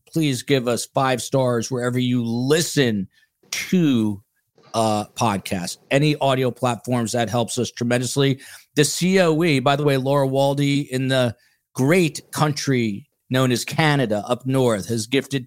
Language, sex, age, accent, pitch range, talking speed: English, male, 40-59, American, 115-135 Hz, 140 wpm